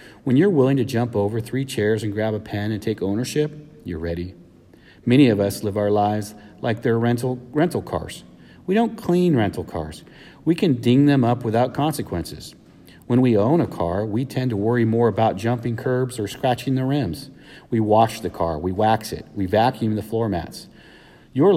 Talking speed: 195 wpm